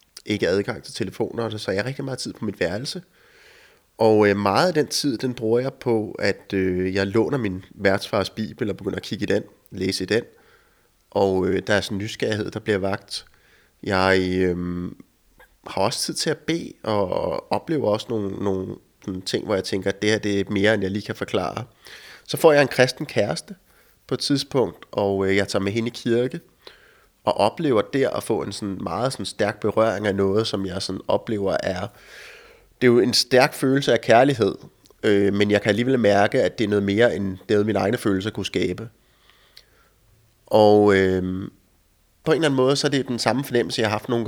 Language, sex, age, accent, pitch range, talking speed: Danish, male, 30-49, native, 100-125 Hz, 215 wpm